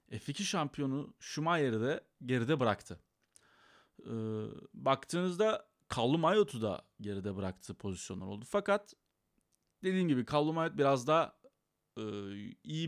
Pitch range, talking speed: 115-150 Hz, 100 wpm